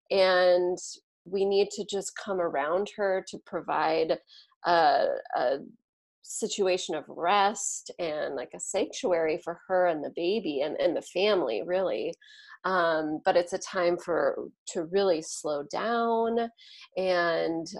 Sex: female